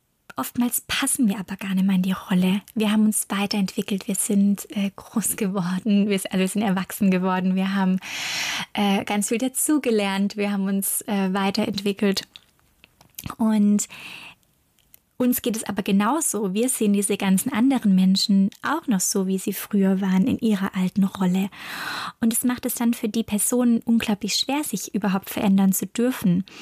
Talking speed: 165 wpm